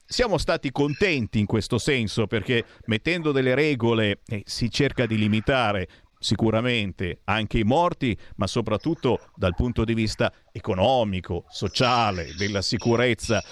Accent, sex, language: native, male, Italian